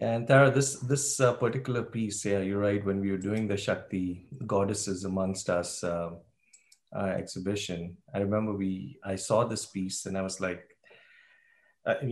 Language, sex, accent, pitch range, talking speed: English, male, Indian, 95-120 Hz, 170 wpm